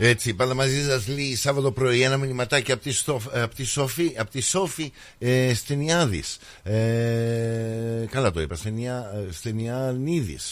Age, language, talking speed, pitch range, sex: 50-69, Greek, 145 wpm, 115-150 Hz, male